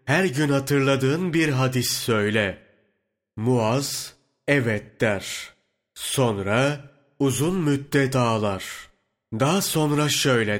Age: 30-49